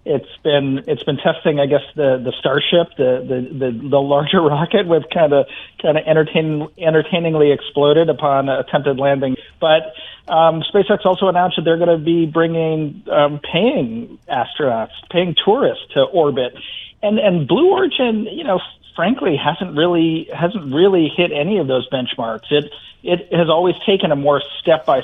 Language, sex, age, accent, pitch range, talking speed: English, male, 40-59, American, 140-170 Hz, 170 wpm